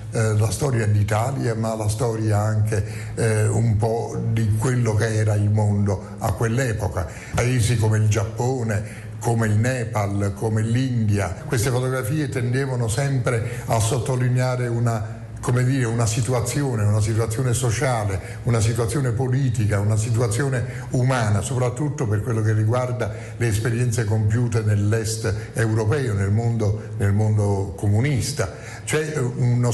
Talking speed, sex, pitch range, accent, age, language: 130 wpm, male, 105-120 Hz, native, 50-69, Italian